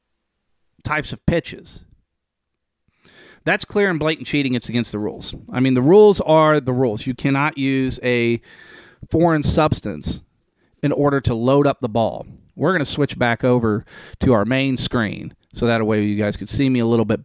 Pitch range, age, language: 125-165 Hz, 40-59, English